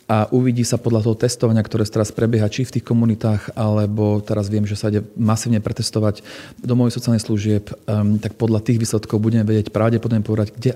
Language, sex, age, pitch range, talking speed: Slovak, male, 40-59, 110-120 Hz, 190 wpm